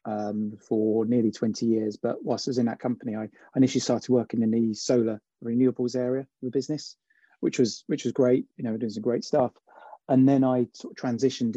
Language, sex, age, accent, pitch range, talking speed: English, male, 30-49, British, 115-140 Hz, 220 wpm